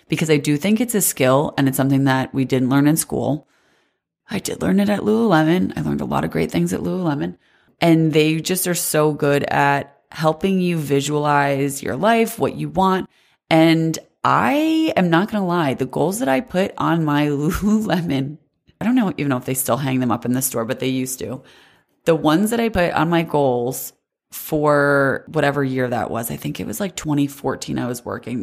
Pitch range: 135-175 Hz